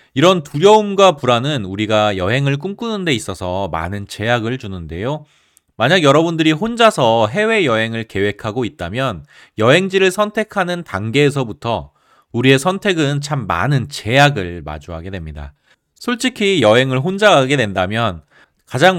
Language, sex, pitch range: Korean, male, 95-155 Hz